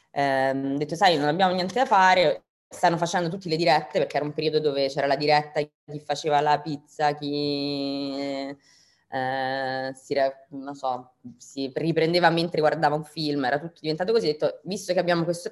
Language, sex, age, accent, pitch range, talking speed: Italian, female, 20-39, native, 140-170 Hz, 175 wpm